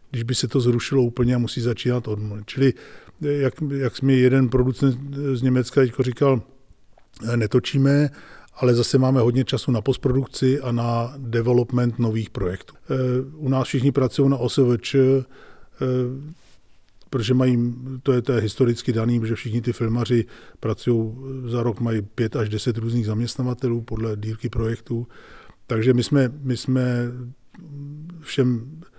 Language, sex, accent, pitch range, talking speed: Czech, male, native, 120-130 Hz, 140 wpm